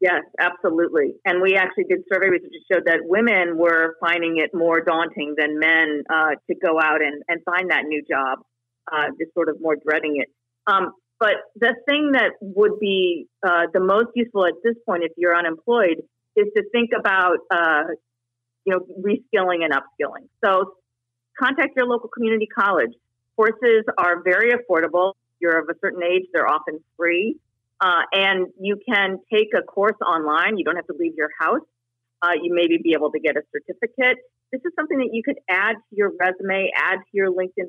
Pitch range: 160-215 Hz